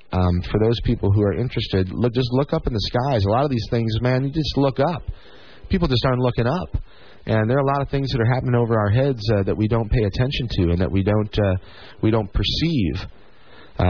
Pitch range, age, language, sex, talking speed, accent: 95-115 Hz, 30-49, English, male, 250 wpm, American